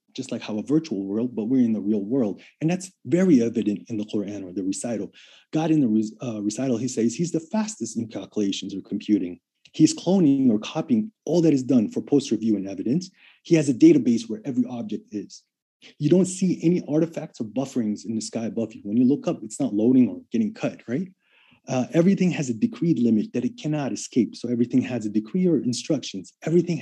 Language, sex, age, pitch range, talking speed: English, male, 30-49, 115-180 Hz, 215 wpm